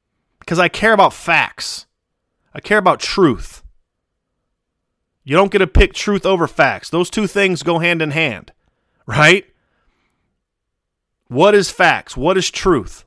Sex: male